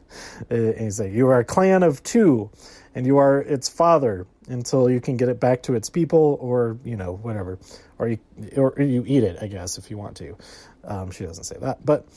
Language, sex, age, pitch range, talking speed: English, male, 30-49, 105-145 Hz, 220 wpm